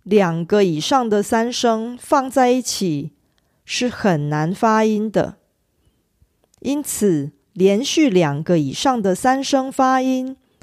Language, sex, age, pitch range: Korean, female, 40-59, 175-245 Hz